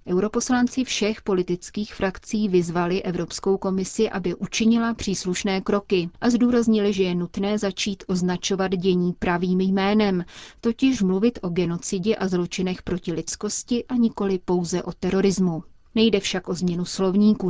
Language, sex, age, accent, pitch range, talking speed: Czech, female, 30-49, native, 180-205 Hz, 135 wpm